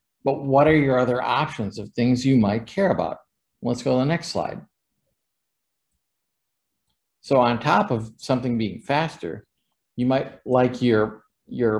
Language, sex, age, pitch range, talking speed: English, male, 50-69, 125-165 Hz, 155 wpm